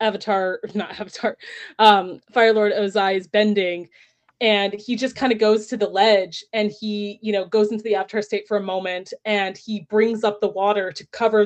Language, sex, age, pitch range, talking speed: English, female, 20-39, 190-225 Hz, 200 wpm